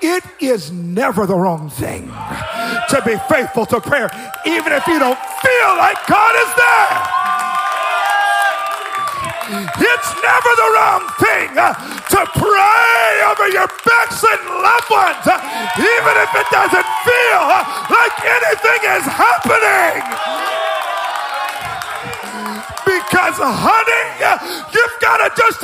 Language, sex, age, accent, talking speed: English, male, 40-59, American, 110 wpm